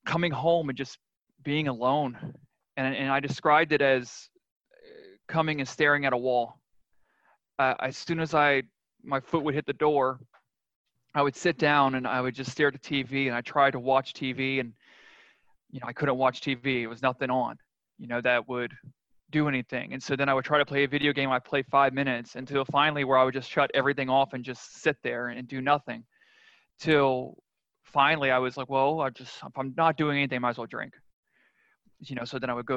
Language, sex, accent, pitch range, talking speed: English, male, American, 125-145 Hz, 220 wpm